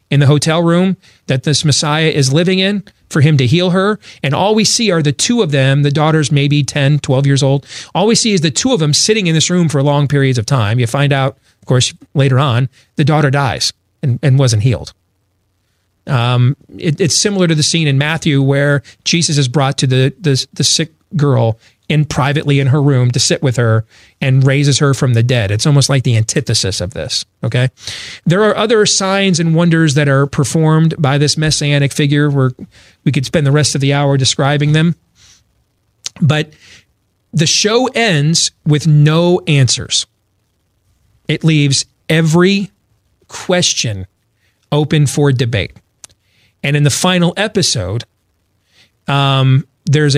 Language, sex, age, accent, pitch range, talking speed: English, male, 40-59, American, 125-160 Hz, 175 wpm